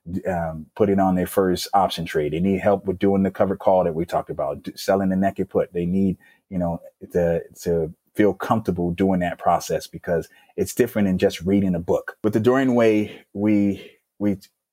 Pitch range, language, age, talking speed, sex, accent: 85-100 Hz, English, 30-49, 200 wpm, male, American